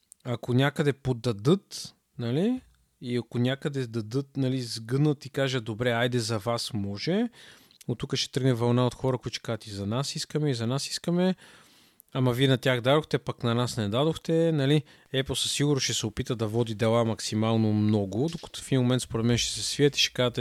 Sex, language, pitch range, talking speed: male, Bulgarian, 110-130 Hz, 195 wpm